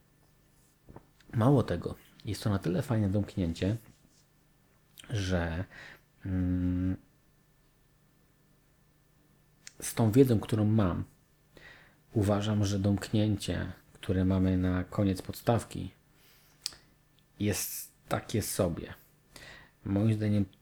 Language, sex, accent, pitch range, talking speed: Polish, male, native, 90-135 Hz, 80 wpm